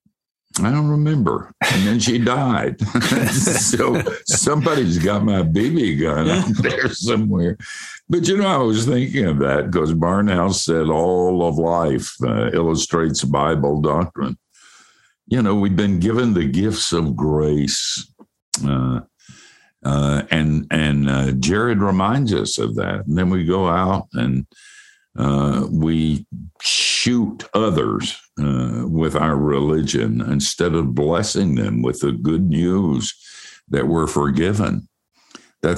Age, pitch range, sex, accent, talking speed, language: 60-79, 70-95 Hz, male, American, 130 wpm, English